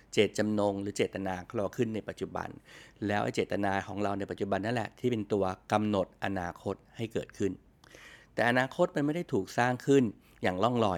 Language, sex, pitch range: Thai, male, 100-125 Hz